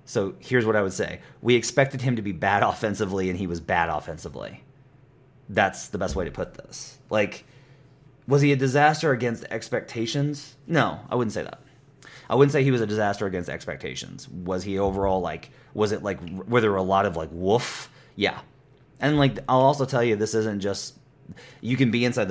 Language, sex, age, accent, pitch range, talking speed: English, male, 30-49, American, 100-135 Hz, 200 wpm